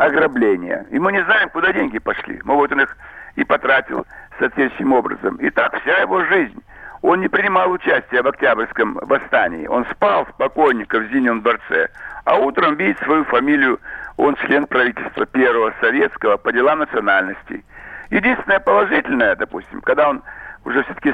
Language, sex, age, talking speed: Russian, male, 60-79, 155 wpm